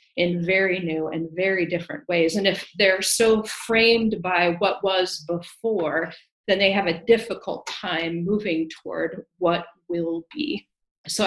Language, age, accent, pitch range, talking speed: English, 40-59, American, 170-195 Hz, 150 wpm